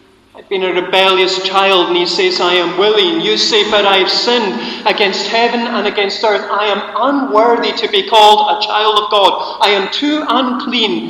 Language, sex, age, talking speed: English, male, 40-59, 190 wpm